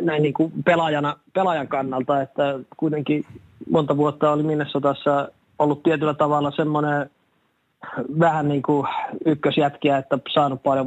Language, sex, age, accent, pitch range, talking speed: Finnish, male, 20-39, native, 130-140 Hz, 135 wpm